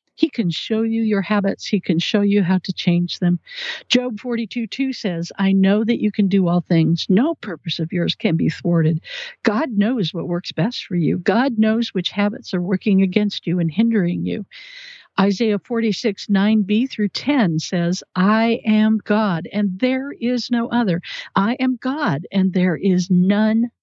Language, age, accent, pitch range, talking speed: English, 60-79, American, 180-225 Hz, 180 wpm